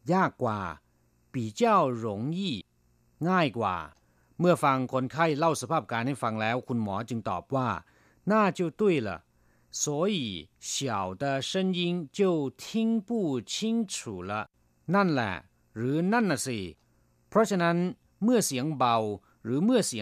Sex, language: male, Thai